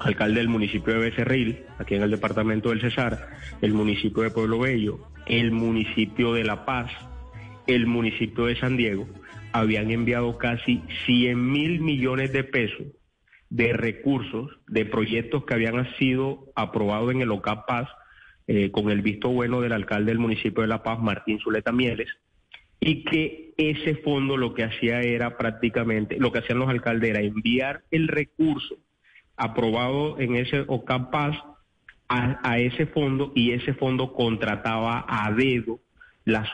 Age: 30-49